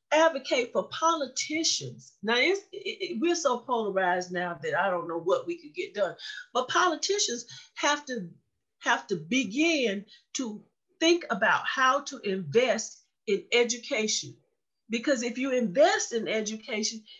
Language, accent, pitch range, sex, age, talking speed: English, American, 215-315 Hz, female, 50-69, 135 wpm